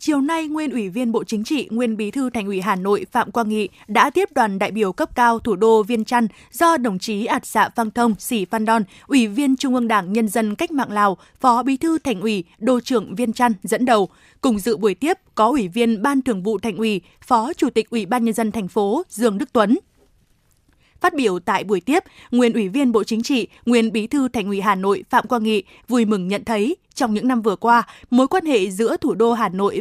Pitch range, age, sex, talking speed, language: 215-255 Hz, 20-39, female, 245 wpm, Vietnamese